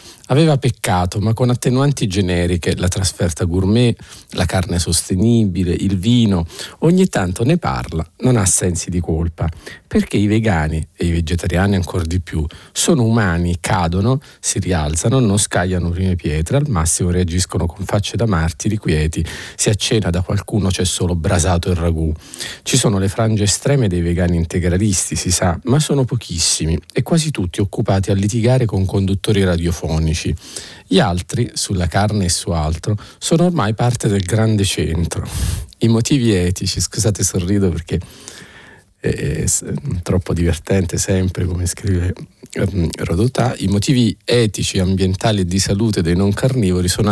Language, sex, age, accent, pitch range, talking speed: Italian, male, 40-59, native, 90-110 Hz, 150 wpm